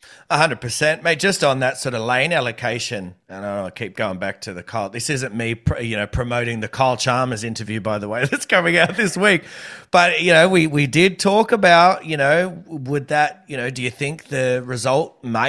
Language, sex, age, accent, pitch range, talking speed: English, male, 30-49, Australian, 115-145 Hz, 220 wpm